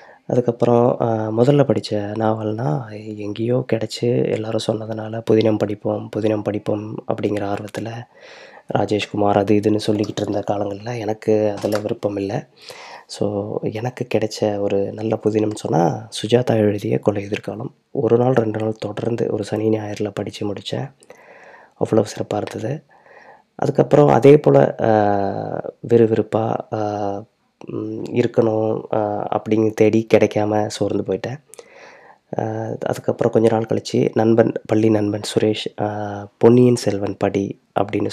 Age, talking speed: 20-39, 110 wpm